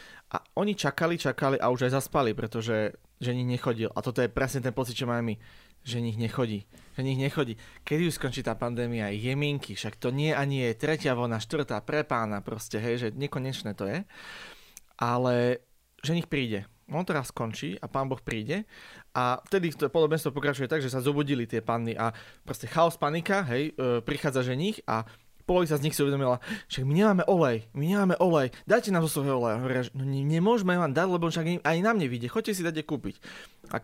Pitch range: 120-155 Hz